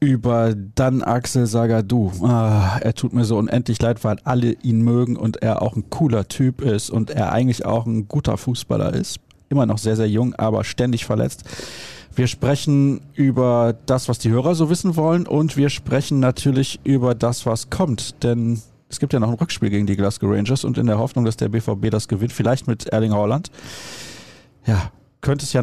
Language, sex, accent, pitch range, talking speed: German, male, German, 110-135 Hz, 195 wpm